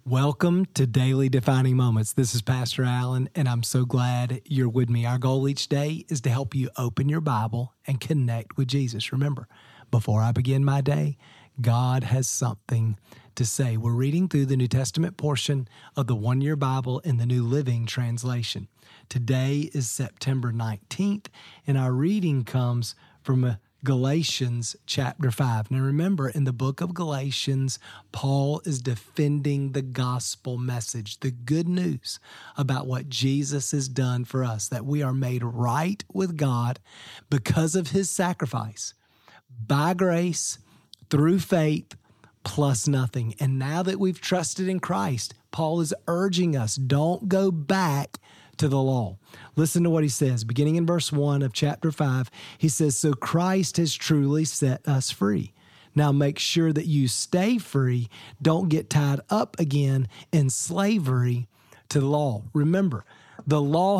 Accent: American